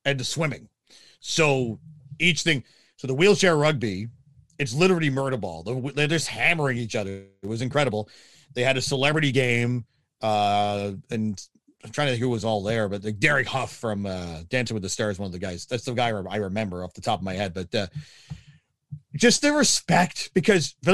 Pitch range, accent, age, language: 120-150 Hz, American, 40-59, English